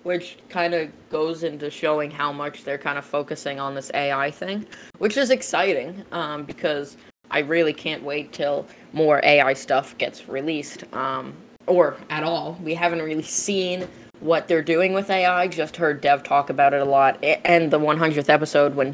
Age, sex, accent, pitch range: 20-39, female, American, 145-175 Hz